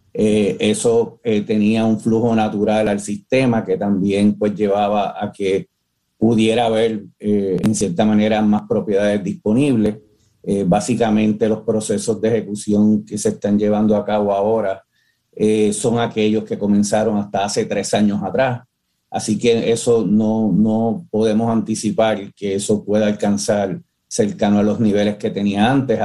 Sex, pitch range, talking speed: male, 105-115 Hz, 150 wpm